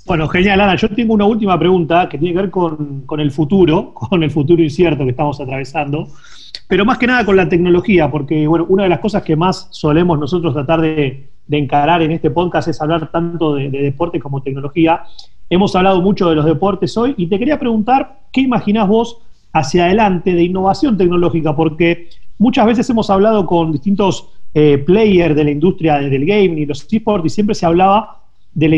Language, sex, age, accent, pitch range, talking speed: Spanish, male, 30-49, Argentinian, 155-195 Hz, 200 wpm